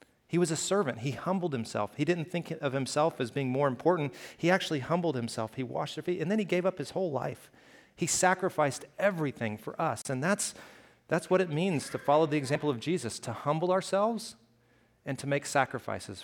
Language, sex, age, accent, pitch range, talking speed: English, male, 40-59, American, 120-175 Hz, 205 wpm